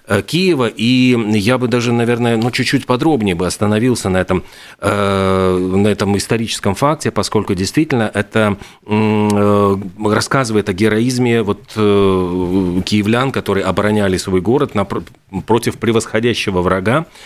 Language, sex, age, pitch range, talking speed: Russian, male, 40-59, 100-120 Hz, 125 wpm